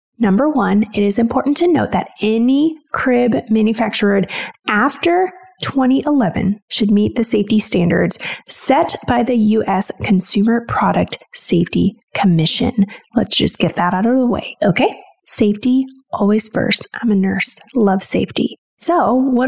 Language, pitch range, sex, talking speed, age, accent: English, 200-255 Hz, female, 140 wpm, 30-49, American